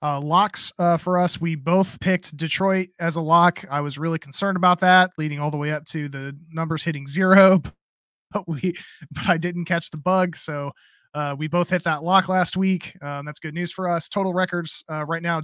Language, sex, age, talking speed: English, male, 20-39, 220 wpm